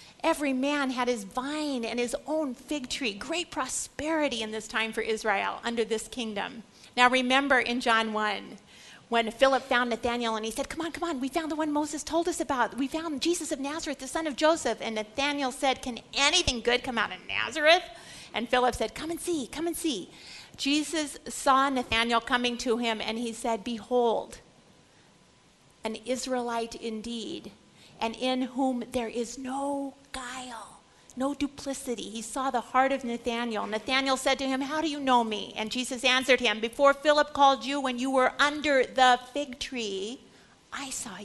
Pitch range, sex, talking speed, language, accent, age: 240-290 Hz, female, 185 wpm, English, American, 40-59